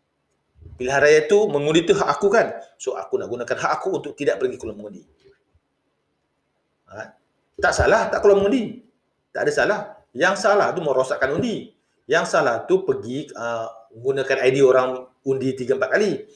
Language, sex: Malay, male